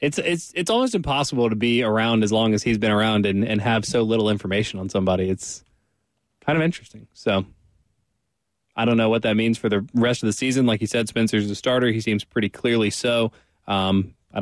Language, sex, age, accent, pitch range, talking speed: English, male, 20-39, American, 105-125 Hz, 215 wpm